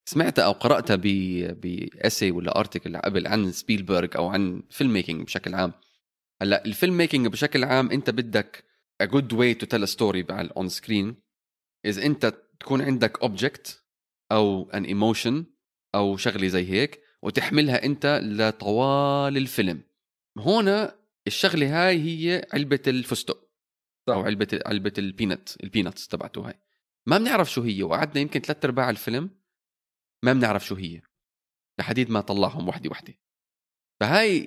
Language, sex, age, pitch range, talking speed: Arabic, male, 20-39, 95-145 Hz, 140 wpm